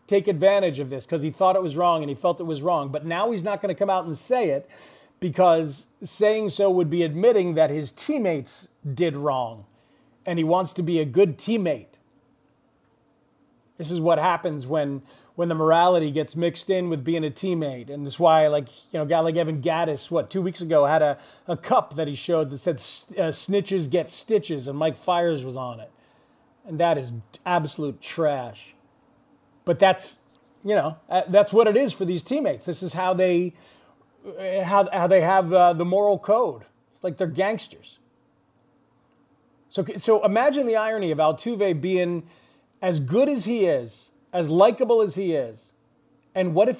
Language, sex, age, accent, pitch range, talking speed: English, male, 30-49, American, 155-190 Hz, 190 wpm